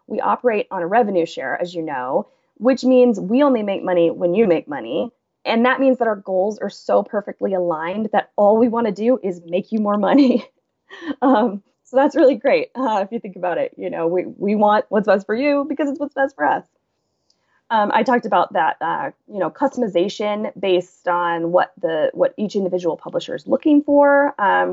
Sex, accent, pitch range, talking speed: female, American, 180-255 Hz, 210 wpm